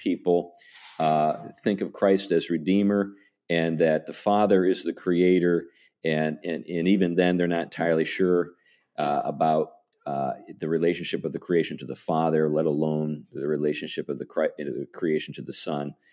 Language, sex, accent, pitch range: English, male, American, 80-100 Hz